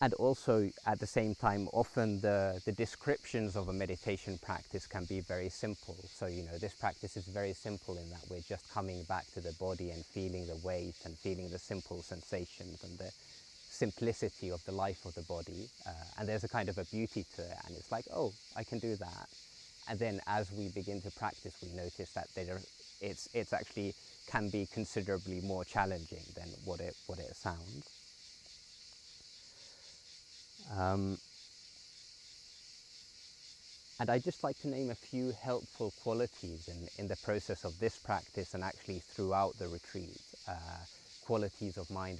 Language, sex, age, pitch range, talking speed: English, male, 20-39, 90-105 Hz, 170 wpm